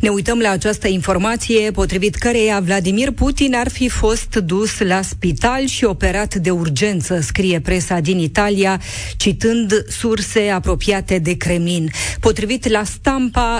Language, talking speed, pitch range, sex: Romanian, 135 wpm, 180-230 Hz, female